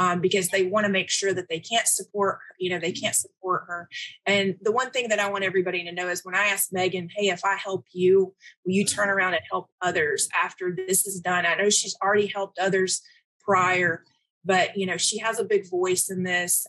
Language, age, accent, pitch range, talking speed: English, 30-49, American, 180-205 Hz, 235 wpm